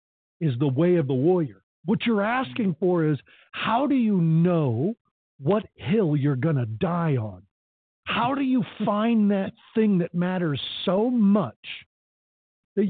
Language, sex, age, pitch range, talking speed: English, male, 50-69, 160-225 Hz, 155 wpm